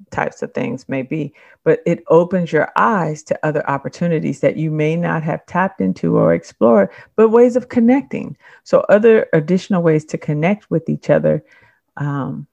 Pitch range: 150-195 Hz